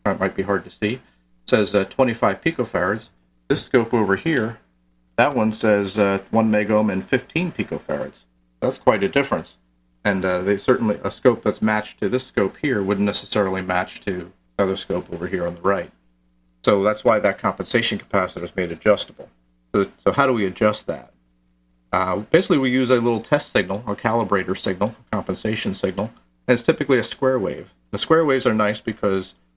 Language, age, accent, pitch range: English, 40-59, American, 90-115 Hz